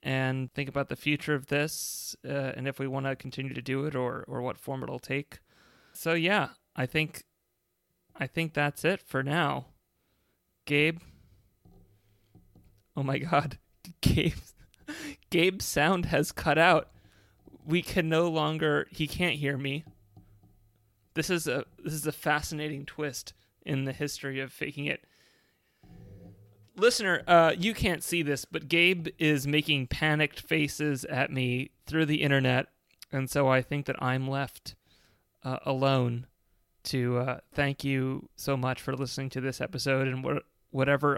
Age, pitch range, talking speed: 30-49, 125-150 Hz, 155 wpm